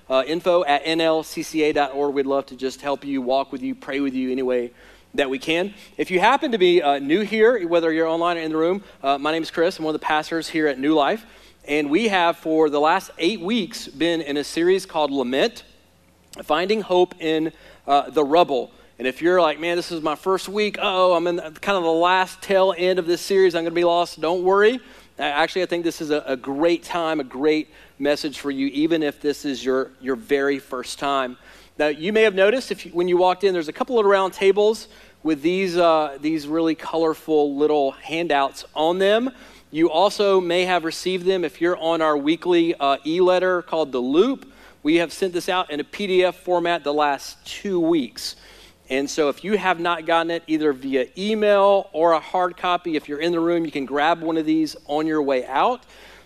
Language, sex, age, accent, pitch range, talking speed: English, male, 40-59, American, 145-180 Hz, 220 wpm